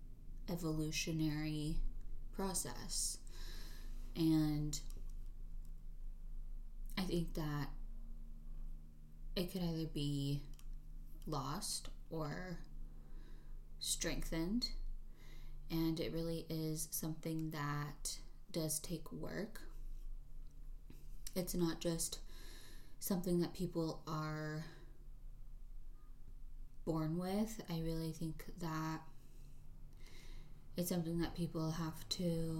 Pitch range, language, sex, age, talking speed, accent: 145-165 Hz, English, female, 20-39, 75 wpm, American